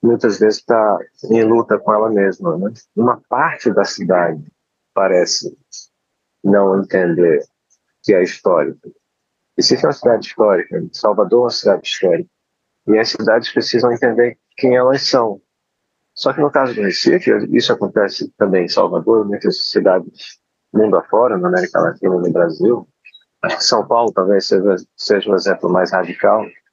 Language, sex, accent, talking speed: Portuguese, male, Brazilian, 155 wpm